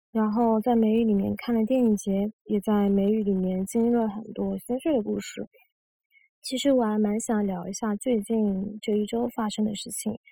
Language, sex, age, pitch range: Chinese, female, 20-39, 210-255 Hz